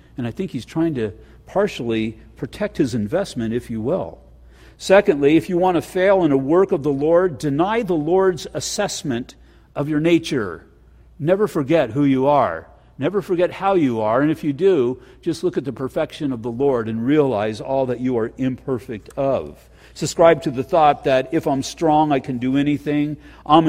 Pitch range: 120-155 Hz